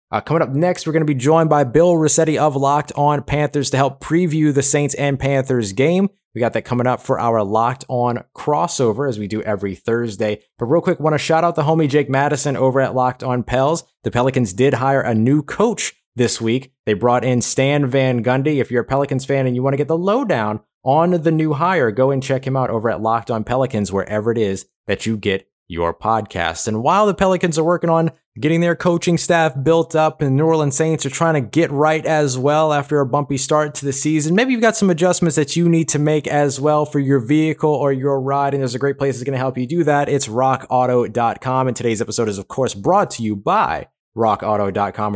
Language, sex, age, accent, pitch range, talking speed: English, male, 30-49, American, 120-155 Hz, 235 wpm